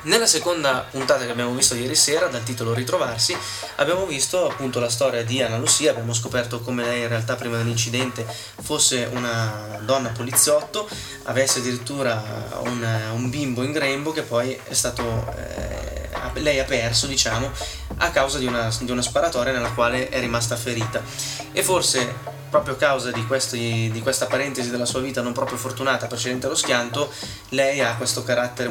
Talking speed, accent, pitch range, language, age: 170 wpm, native, 115-130 Hz, Italian, 20-39